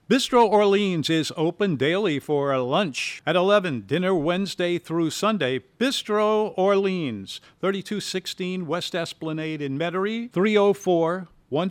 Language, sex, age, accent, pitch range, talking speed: English, male, 50-69, American, 135-180 Hz, 100 wpm